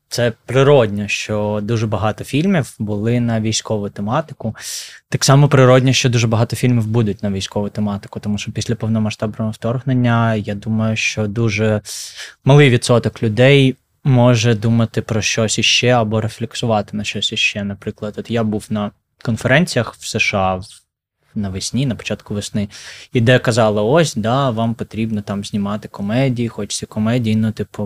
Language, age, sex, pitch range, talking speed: Ukrainian, 20-39, male, 105-125 Hz, 150 wpm